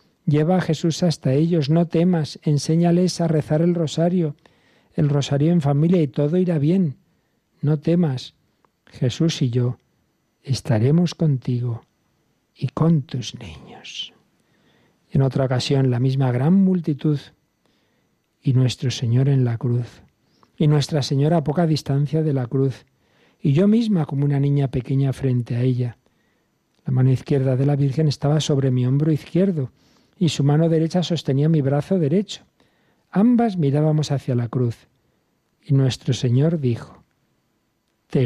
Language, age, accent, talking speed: Spanish, 50-69, Spanish, 145 wpm